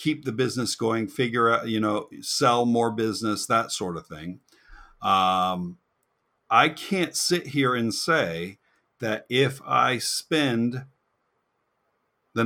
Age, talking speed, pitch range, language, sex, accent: 50-69, 130 wpm, 95-120 Hz, English, male, American